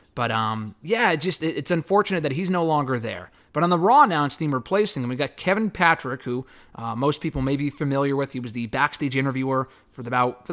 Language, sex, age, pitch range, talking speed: English, male, 30-49, 125-165 Hz, 235 wpm